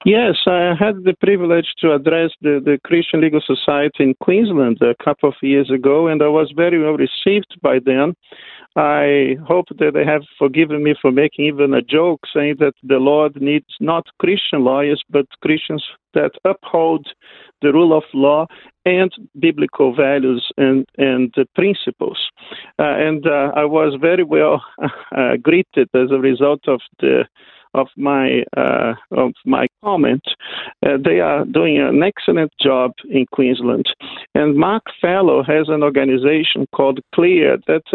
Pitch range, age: 140-175 Hz, 50-69